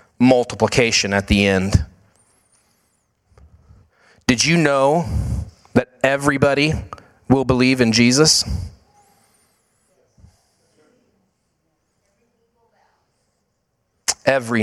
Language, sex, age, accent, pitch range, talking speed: English, male, 30-49, American, 100-115 Hz, 55 wpm